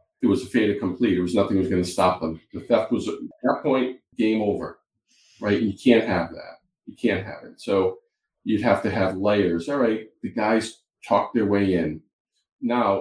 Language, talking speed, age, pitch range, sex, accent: English, 215 wpm, 40-59, 90-125 Hz, male, American